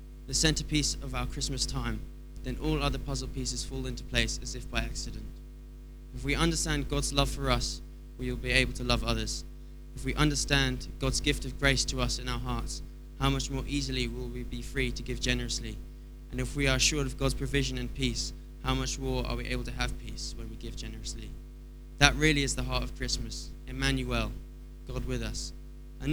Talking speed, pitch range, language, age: 205 wpm, 115-135 Hz, English, 20-39